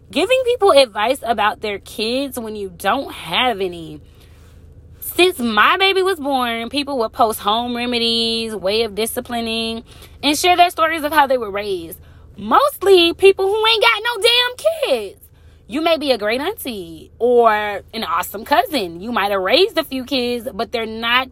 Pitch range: 225-320 Hz